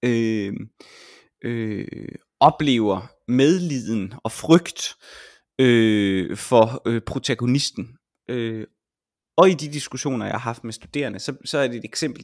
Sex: male